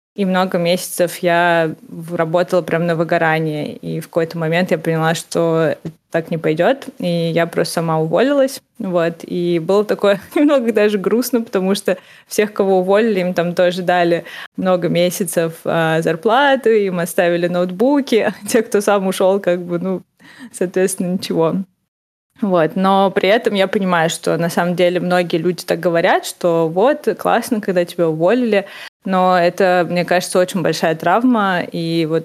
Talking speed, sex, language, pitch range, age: 155 wpm, female, Russian, 170-195 Hz, 20-39